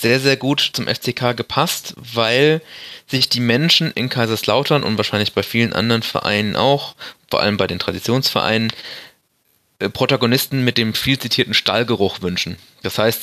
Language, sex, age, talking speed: German, male, 20-39, 150 wpm